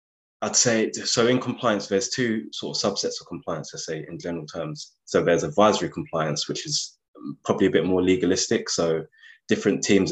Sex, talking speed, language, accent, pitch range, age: male, 185 wpm, English, British, 80-95 Hz, 20-39